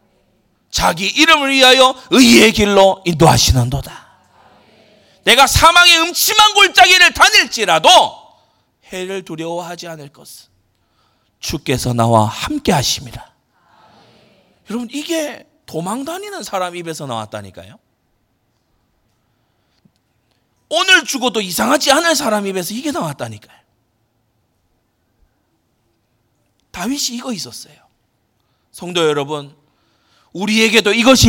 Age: 40-59